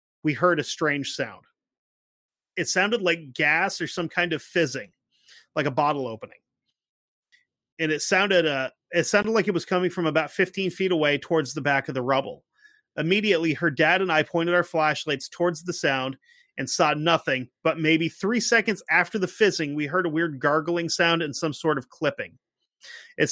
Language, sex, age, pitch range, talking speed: English, male, 30-49, 150-180 Hz, 185 wpm